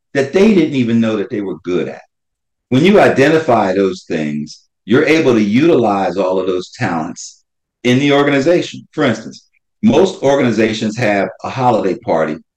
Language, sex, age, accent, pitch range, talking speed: English, male, 50-69, American, 100-130 Hz, 160 wpm